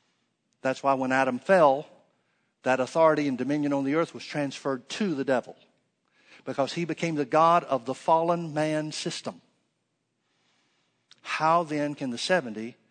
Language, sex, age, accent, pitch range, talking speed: English, male, 50-69, American, 130-160 Hz, 150 wpm